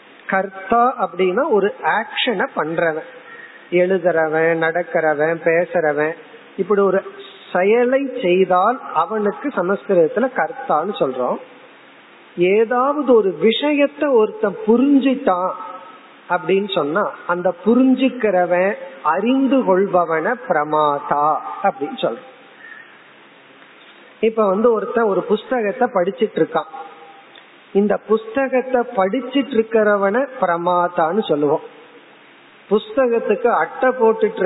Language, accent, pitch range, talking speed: Tamil, native, 180-240 Hz, 80 wpm